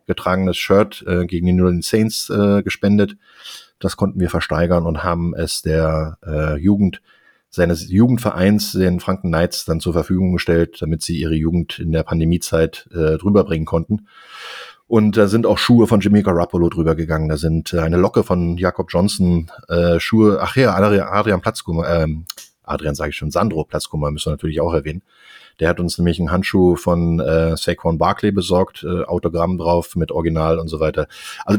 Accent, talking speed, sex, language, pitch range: German, 180 wpm, male, German, 85-100 Hz